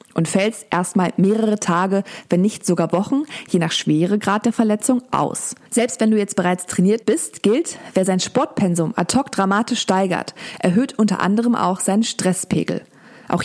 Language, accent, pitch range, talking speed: German, German, 185-230 Hz, 170 wpm